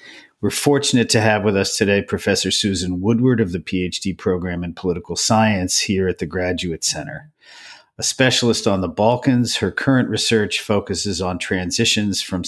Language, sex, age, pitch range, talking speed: English, male, 50-69, 90-115 Hz, 165 wpm